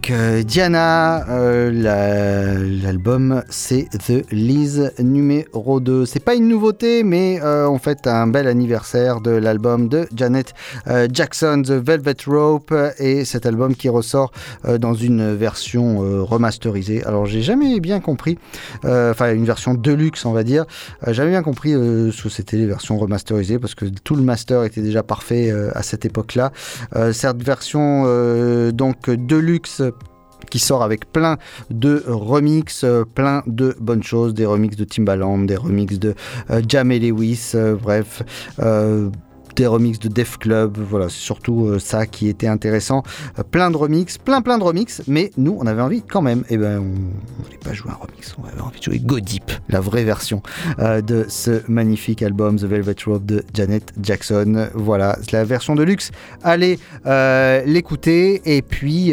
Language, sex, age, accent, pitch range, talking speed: French, male, 30-49, French, 110-140 Hz, 175 wpm